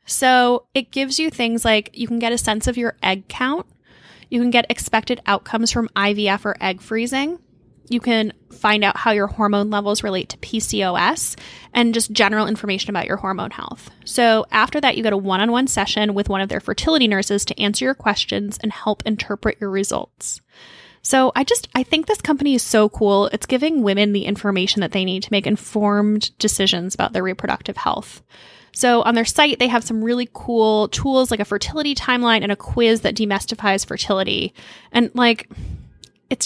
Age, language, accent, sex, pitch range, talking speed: 10-29, English, American, female, 205-245 Hz, 190 wpm